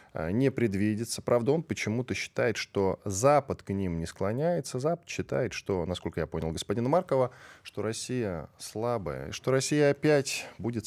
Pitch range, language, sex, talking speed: 95-125 Hz, Russian, male, 150 wpm